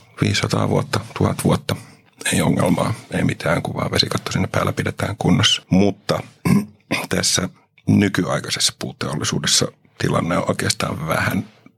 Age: 50-69